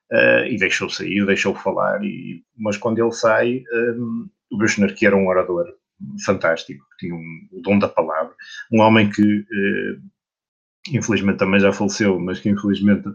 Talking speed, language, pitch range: 170 wpm, Portuguese, 95-120 Hz